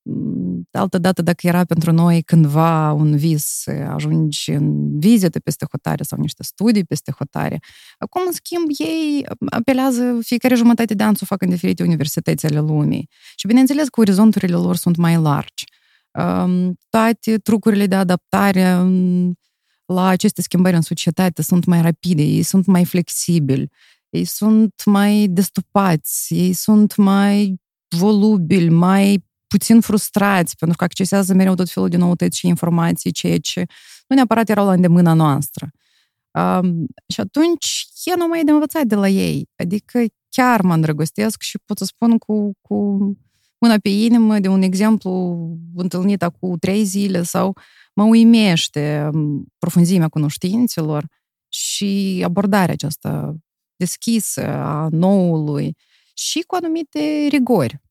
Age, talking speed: 30-49, 140 wpm